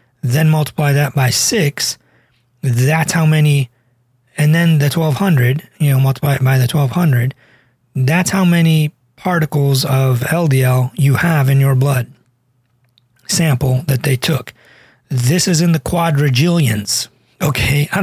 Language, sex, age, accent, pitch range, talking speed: English, male, 30-49, American, 130-155 Hz, 135 wpm